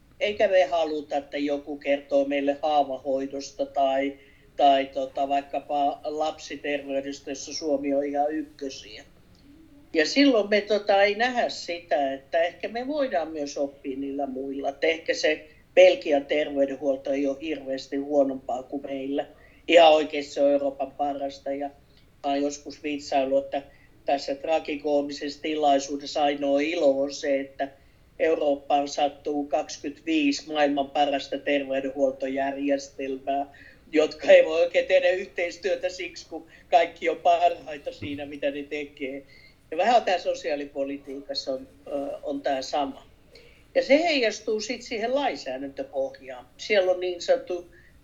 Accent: native